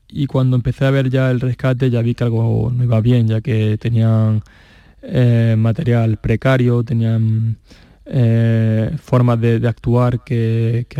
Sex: male